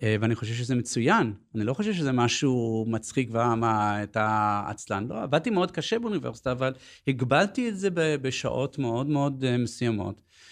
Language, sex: Hebrew, male